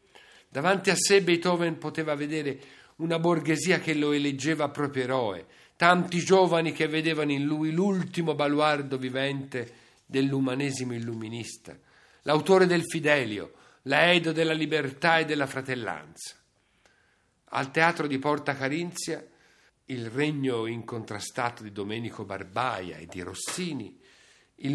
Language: Italian